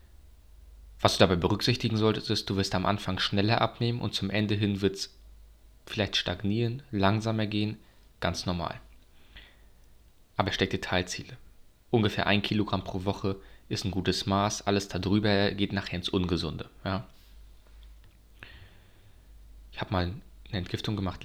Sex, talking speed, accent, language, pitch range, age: male, 140 wpm, German, German, 90-110 Hz, 20-39